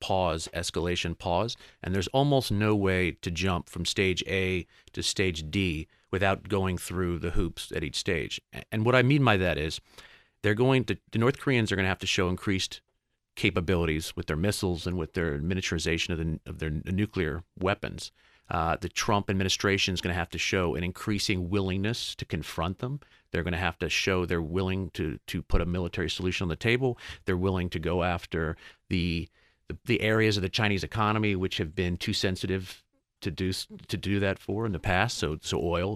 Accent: American